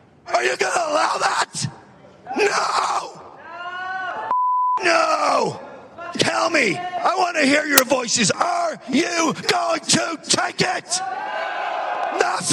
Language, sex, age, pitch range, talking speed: English, male, 40-59, 265-335 Hz, 110 wpm